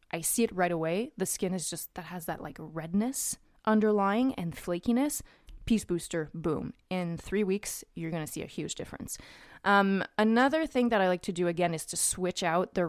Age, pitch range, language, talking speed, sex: 20-39, 170-210 Hz, English, 205 wpm, female